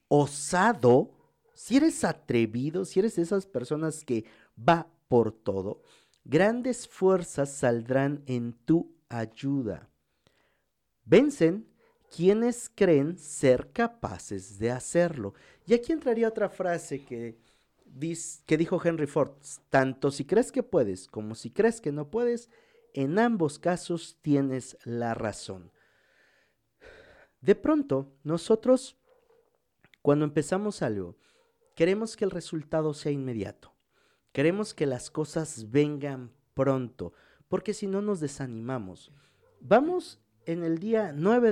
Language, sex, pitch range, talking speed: Spanish, male, 125-200 Hz, 115 wpm